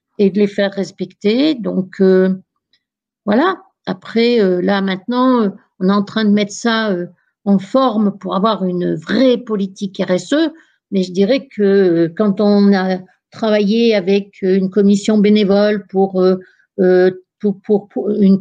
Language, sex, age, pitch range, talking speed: French, female, 60-79, 200-250 Hz, 155 wpm